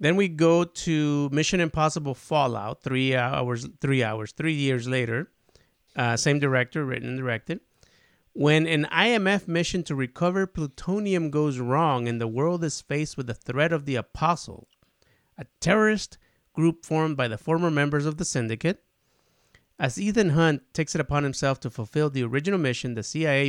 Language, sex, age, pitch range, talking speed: English, male, 30-49, 120-155 Hz, 165 wpm